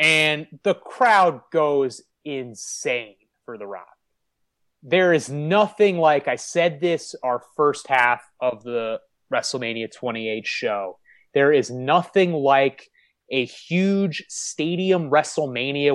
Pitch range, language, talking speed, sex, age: 135-185 Hz, English, 115 wpm, male, 30-49